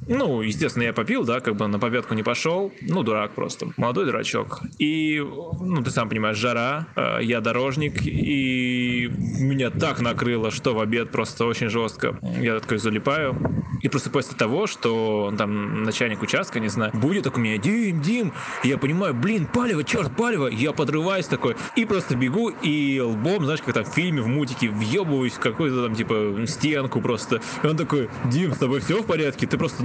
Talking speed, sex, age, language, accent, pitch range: 185 wpm, male, 20-39, Russian, native, 115-150 Hz